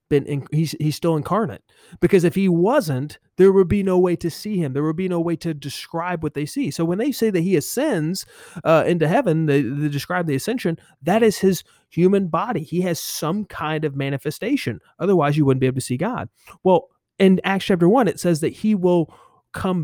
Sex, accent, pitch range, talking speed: male, American, 145-185 Hz, 220 wpm